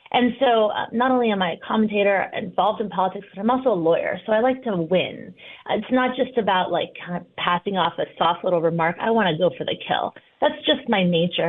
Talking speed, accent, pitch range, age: 235 wpm, American, 175-230 Hz, 30-49